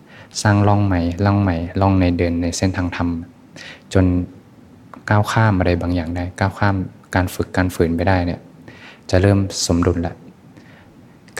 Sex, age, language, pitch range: male, 20-39, Thai, 85-95 Hz